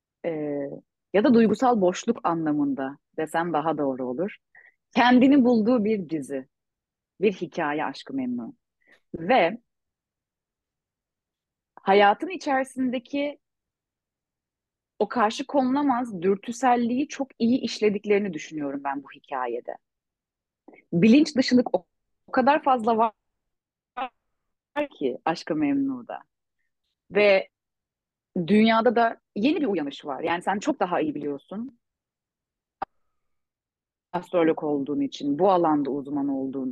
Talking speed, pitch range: 100 wpm, 175-260 Hz